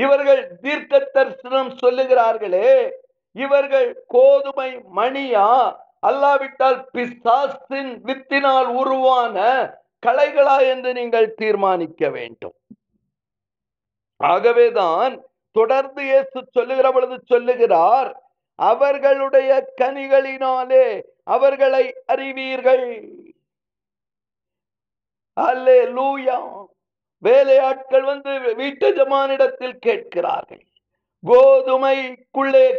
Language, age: Tamil, 50-69